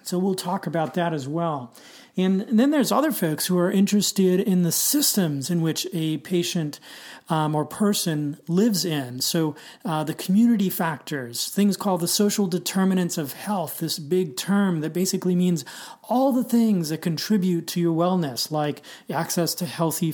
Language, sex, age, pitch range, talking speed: English, male, 30-49, 160-195 Hz, 175 wpm